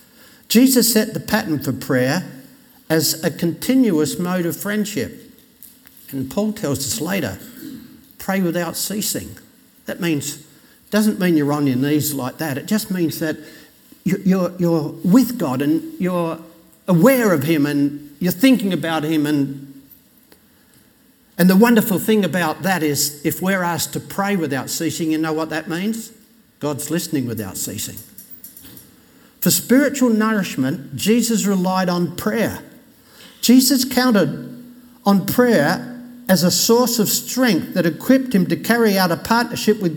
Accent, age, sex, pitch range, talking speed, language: Australian, 60-79, male, 165-240 Hz, 145 wpm, English